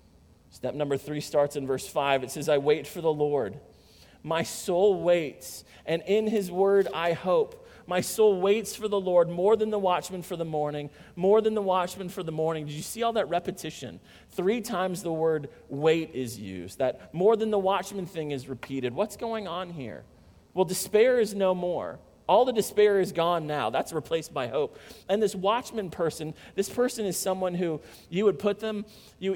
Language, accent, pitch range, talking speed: English, American, 155-200 Hz, 200 wpm